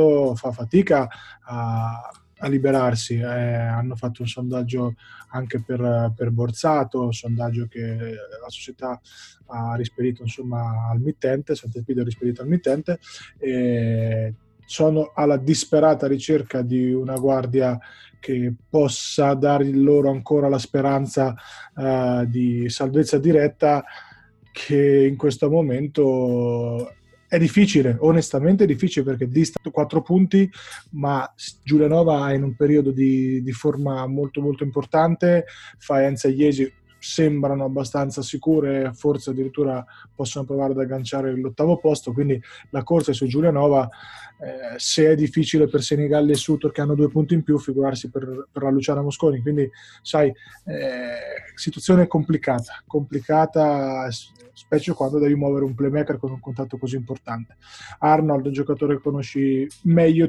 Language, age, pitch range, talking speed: Italian, 20-39, 125-150 Hz, 135 wpm